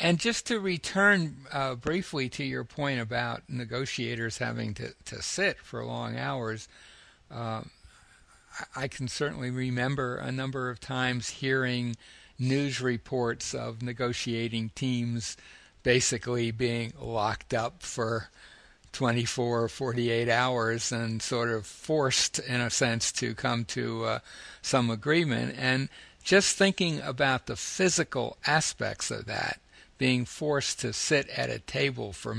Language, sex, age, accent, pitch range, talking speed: English, male, 60-79, American, 115-135 Hz, 135 wpm